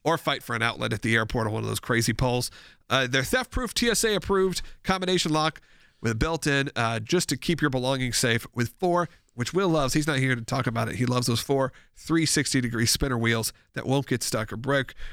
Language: English